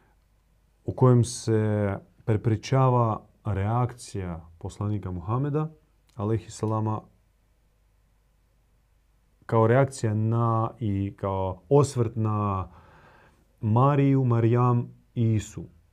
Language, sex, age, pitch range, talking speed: Croatian, male, 40-59, 100-130 Hz, 65 wpm